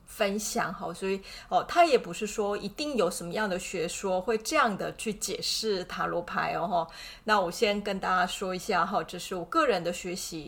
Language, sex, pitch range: Chinese, female, 185-230 Hz